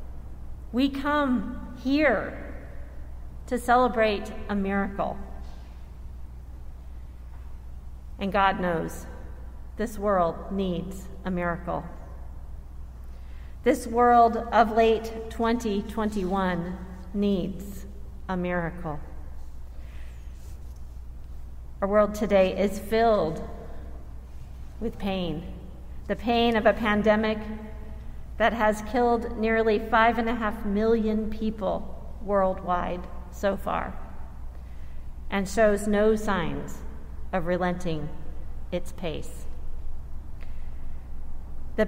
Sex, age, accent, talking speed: female, 40-59, American, 80 wpm